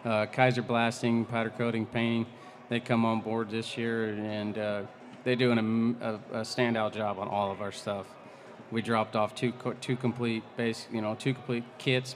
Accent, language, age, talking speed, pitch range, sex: American, English, 30-49, 190 wpm, 110-120 Hz, male